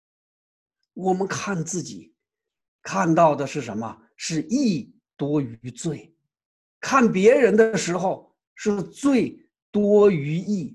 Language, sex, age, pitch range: Chinese, male, 50-69, 145-225 Hz